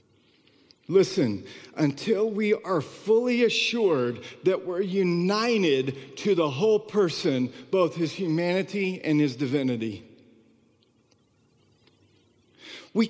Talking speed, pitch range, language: 90 wpm, 185-245 Hz, English